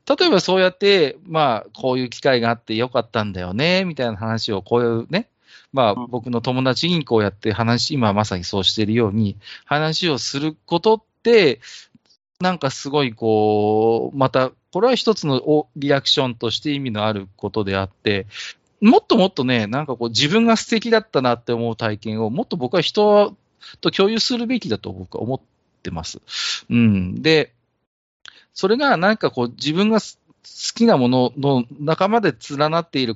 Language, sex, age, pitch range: Japanese, male, 40-59, 115-170 Hz